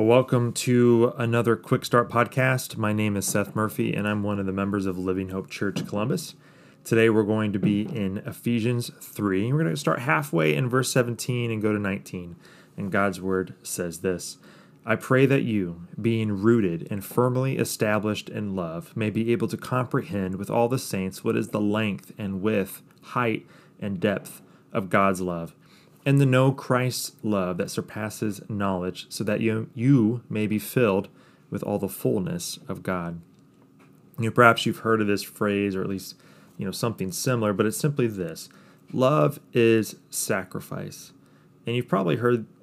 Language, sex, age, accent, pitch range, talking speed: English, male, 30-49, American, 100-120 Hz, 175 wpm